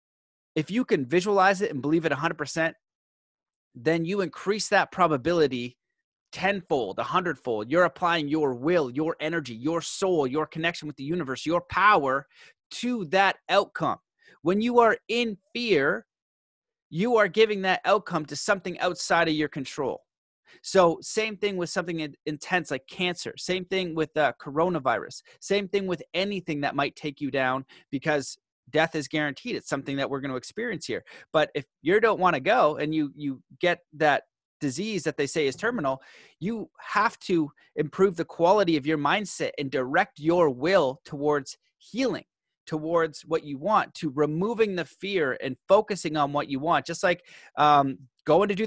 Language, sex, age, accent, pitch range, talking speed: English, male, 30-49, American, 150-190 Hz, 170 wpm